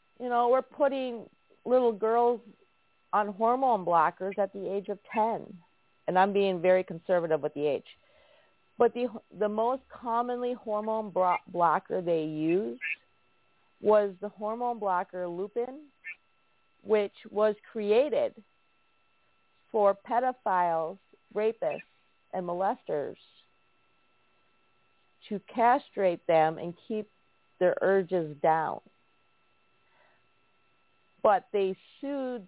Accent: American